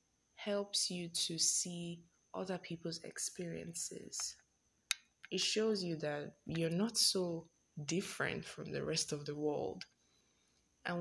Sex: female